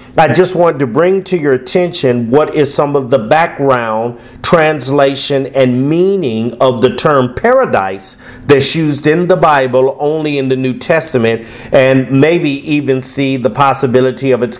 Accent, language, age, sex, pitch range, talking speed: American, English, 50-69, male, 120-145 Hz, 160 wpm